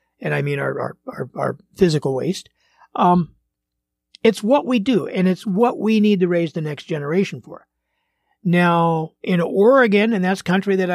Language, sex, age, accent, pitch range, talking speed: English, male, 60-79, American, 155-200 Hz, 175 wpm